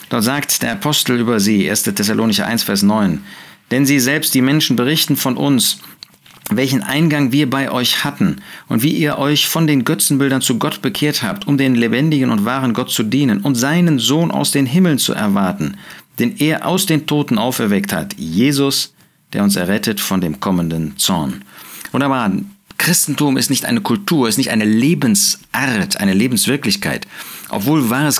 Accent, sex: German, male